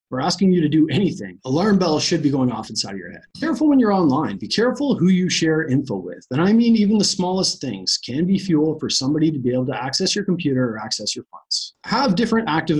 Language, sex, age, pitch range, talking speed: English, male, 30-49, 135-195 Hz, 255 wpm